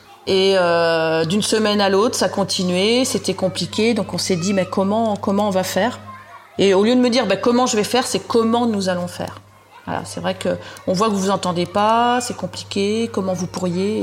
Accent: French